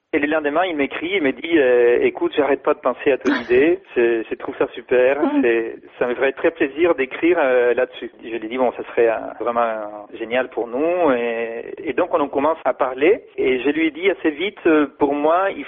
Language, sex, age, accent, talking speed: French, male, 40-59, French, 240 wpm